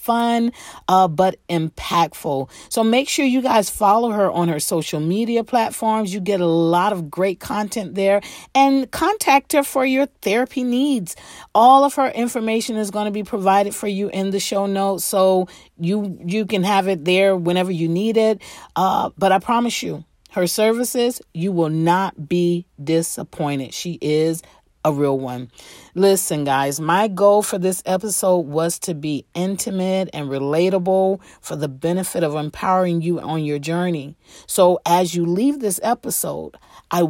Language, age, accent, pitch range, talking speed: English, 40-59, American, 170-220 Hz, 165 wpm